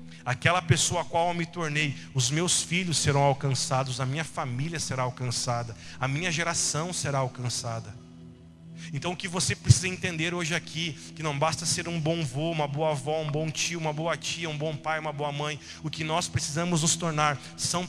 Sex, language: male, Portuguese